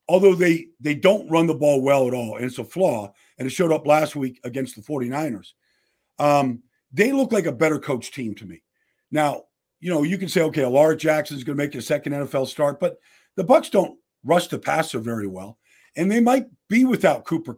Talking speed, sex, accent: 220 wpm, male, American